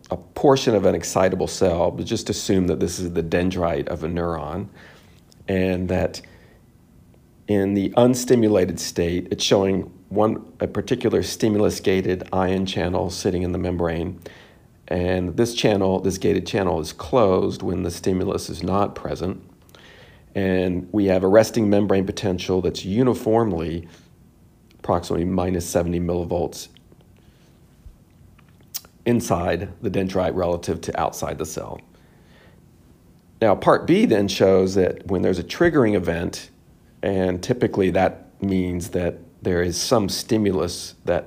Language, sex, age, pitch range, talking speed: English, male, 50-69, 85-100 Hz, 130 wpm